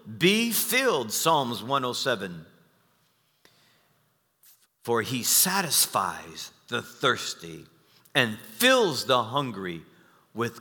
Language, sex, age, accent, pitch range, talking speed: English, male, 50-69, American, 110-170 Hz, 80 wpm